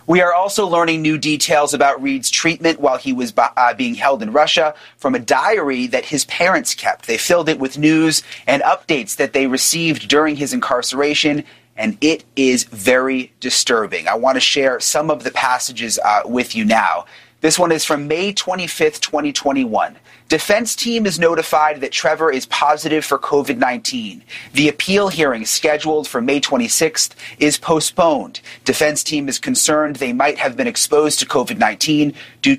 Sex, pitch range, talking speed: male, 140-180 Hz, 170 wpm